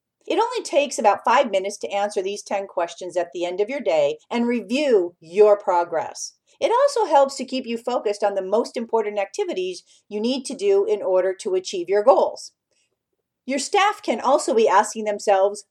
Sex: female